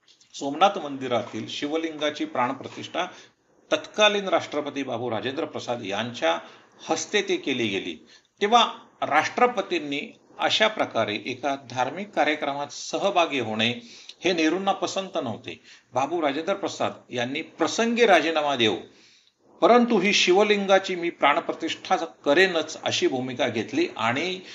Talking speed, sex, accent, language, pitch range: 110 wpm, male, native, Marathi, 130-190 Hz